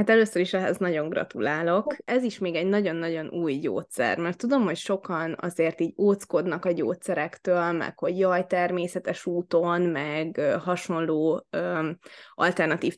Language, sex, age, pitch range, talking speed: Hungarian, female, 20-39, 170-195 Hz, 140 wpm